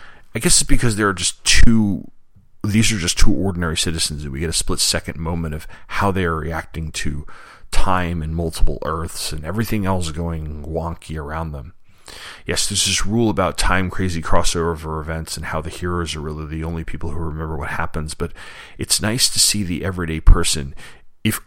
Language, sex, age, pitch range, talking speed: English, male, 30-49, 80-95 Hz, 195 wpm